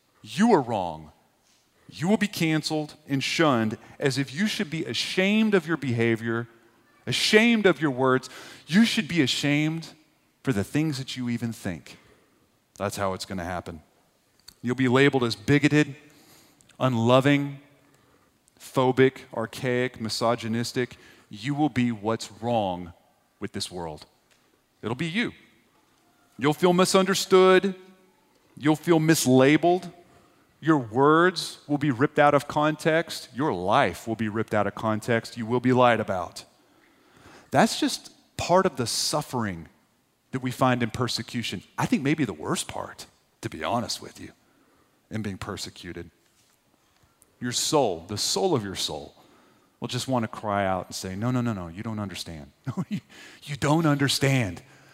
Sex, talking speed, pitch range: male, 150 wpm, 115-155 Hz